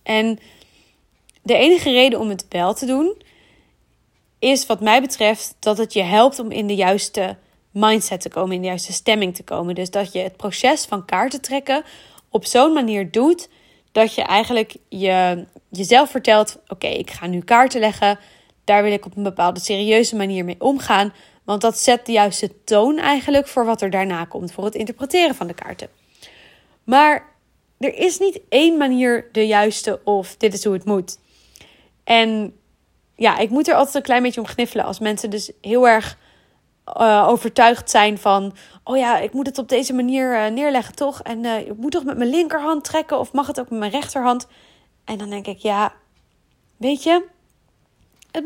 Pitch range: 205-265 Hz